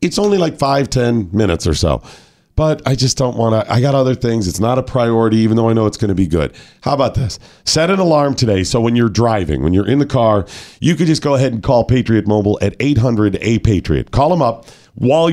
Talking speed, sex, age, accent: 250 wpm, male, 40-59, American